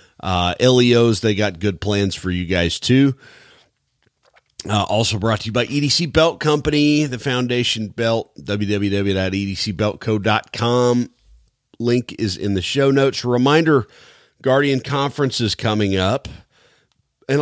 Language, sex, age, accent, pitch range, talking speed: English, male, 40-59, American, 90-130 Hz, 125 wpm